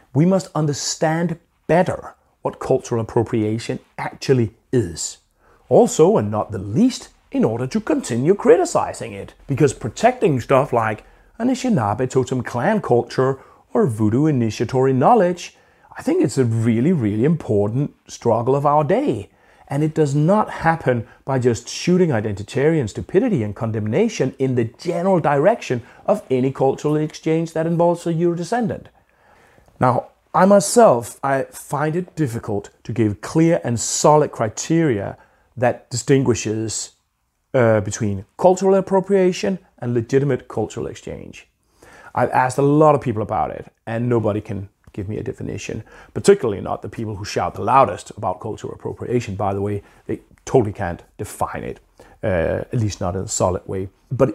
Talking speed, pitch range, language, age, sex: 150 wpm, 115-160 Hz, English, 40-59, male